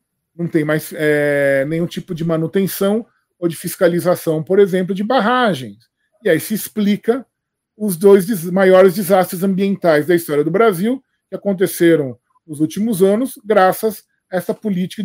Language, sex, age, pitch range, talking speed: Portuguese, male, 20-39, 160-220 Hz, 145 wpm